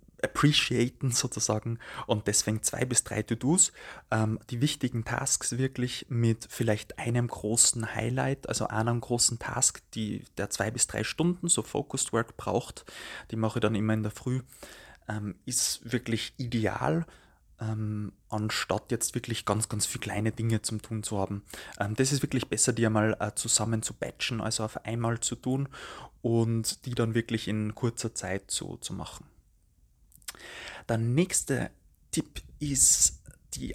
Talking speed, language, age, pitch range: 155 wpm, German, 20-39, 110-125 Hz